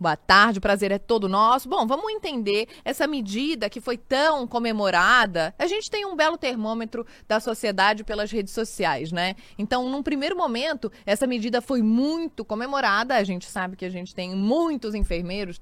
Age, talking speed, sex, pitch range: 20-39, 175 wpm, female, 185-245 Hz